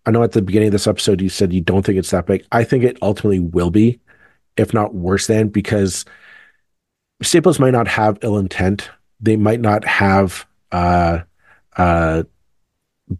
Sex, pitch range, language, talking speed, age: male, 95-115 Hz, English, 175 wpm, 40-59